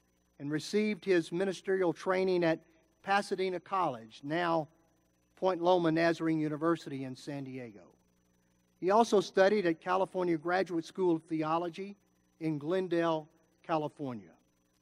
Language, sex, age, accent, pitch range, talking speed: English, male, 50-69, American, 155-195 Hz, 115 wpm